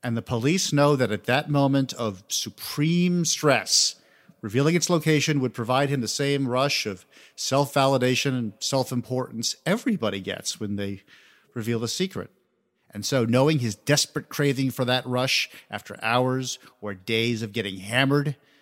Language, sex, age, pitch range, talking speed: English, male, 50-69, 110-145 Hz, 150 wpm